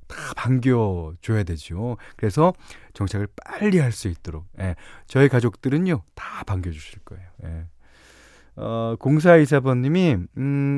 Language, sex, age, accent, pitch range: Korean, male, 40-59, native, 95-145 Hz